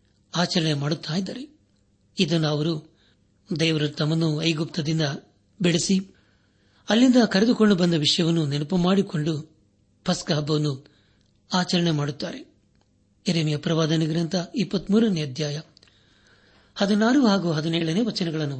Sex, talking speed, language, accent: male, 75 wpm, Kannada, native